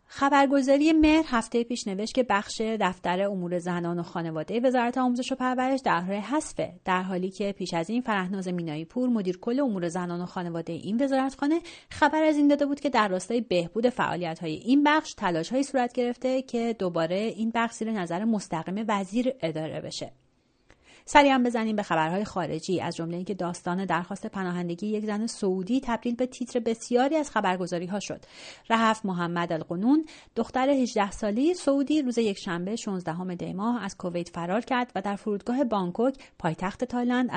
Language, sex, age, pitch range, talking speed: Persian, female, 30-49, 180-245 Hz, 165 wpm